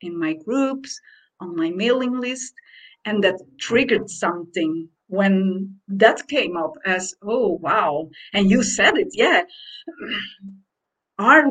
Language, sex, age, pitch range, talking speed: English, female, 50-69, 200-285 Hz, 125 wpm